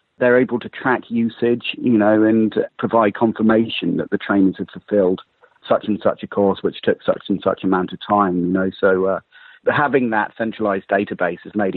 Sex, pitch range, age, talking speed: male, 95-130 Hz, 40-59, 195 wpm